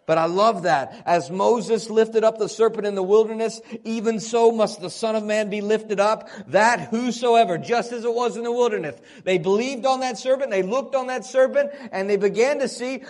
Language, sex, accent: English, male, American